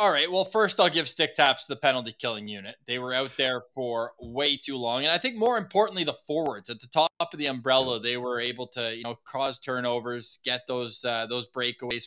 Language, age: English, 20-39